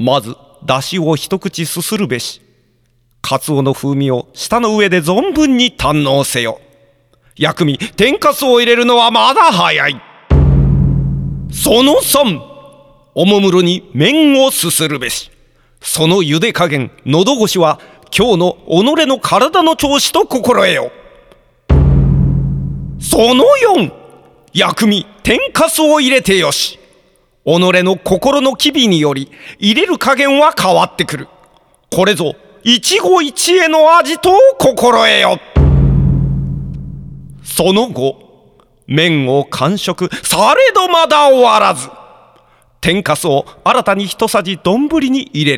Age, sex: 40-59, male